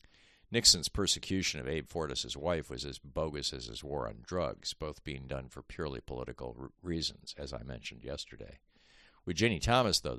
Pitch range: 70-90 Hz